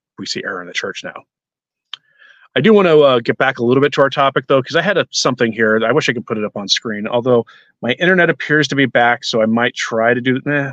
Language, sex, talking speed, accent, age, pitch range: English, male, 285 wpm, American, 30-49, 115-160 Hz